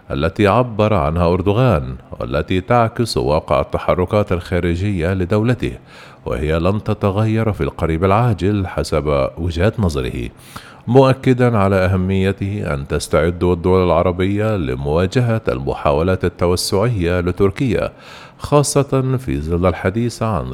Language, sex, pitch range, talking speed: Arabic, male, 85-115 Hz, 100 wpm